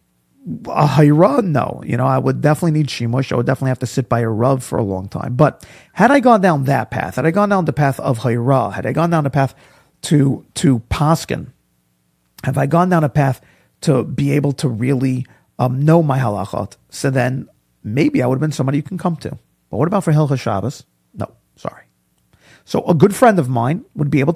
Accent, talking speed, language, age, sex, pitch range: American, 225 wpm, English, 40-59, male, 125-175 Hz